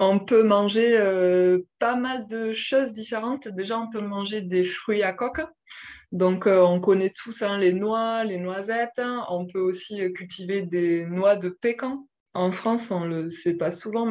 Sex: female